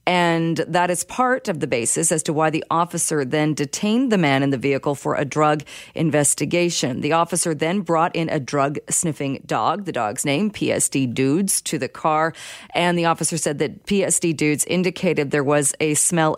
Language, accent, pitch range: English, American, 150-185 Hz